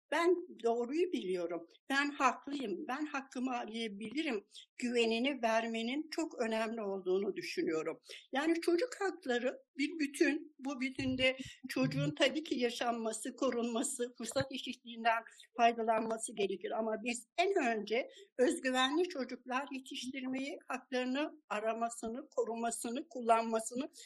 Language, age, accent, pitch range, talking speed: Turkish, 60-79, native, 225-300 Hz, 105 wpm